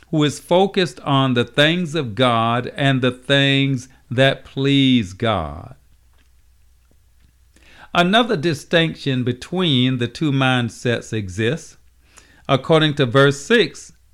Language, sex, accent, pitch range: English, male, American, 110-150 Hz